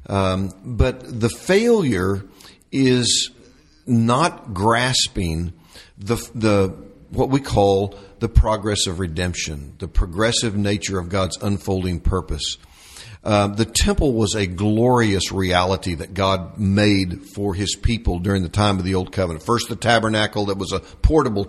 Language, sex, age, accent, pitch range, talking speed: English, male, 50-69, American, 95-115 Hz, 140 wpm